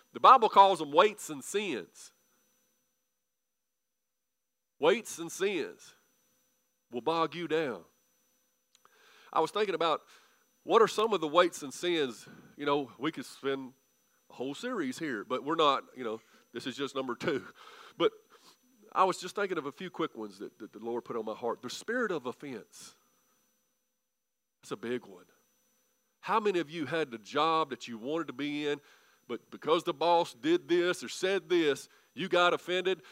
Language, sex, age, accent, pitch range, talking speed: English, male, 40-59, American, 160-255 Hz, 175 wpm